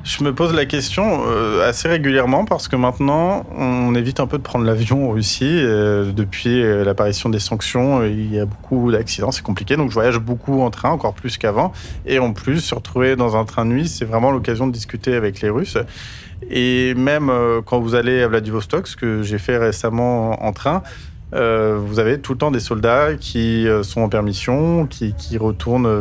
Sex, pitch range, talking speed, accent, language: male, 110-130 Hz, 195 wpm, French, French